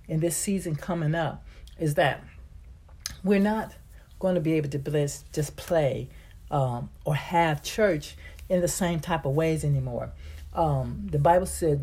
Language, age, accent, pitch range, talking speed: English, 60-79, American, 140-180 Hz, 155 wpm